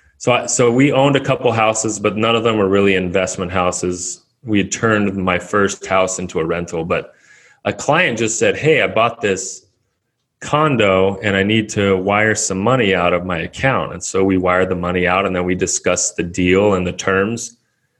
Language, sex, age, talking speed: English, male, 30-49, 205 wpm